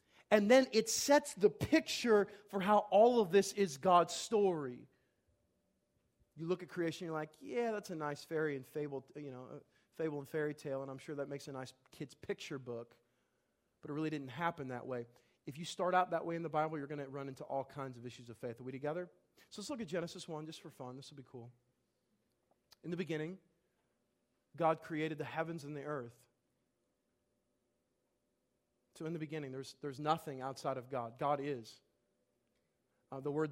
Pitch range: 130-165 Hz